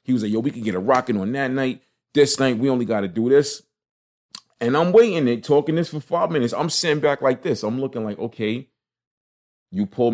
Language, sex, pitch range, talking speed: English, male, 105-145 Hz, 235 wpm